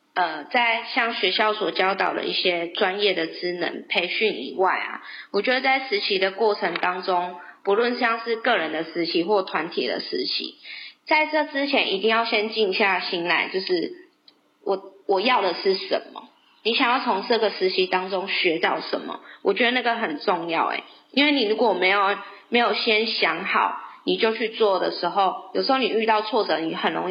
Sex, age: female, 20-39